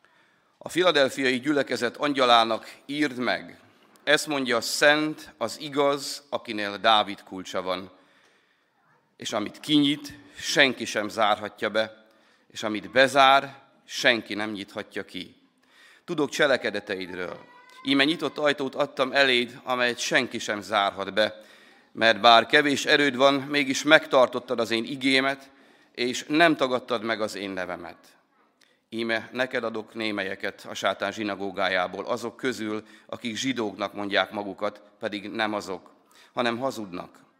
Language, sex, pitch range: Hungarian, male, 110-140 Hz